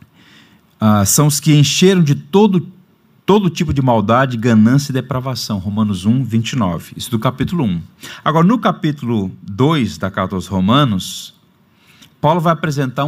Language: Portuguese